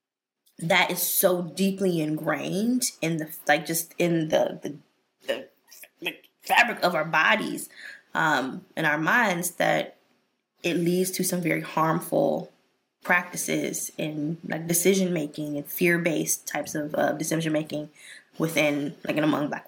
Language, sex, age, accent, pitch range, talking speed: English, female, 20-39, American, 160-195 Hz, 145 wpm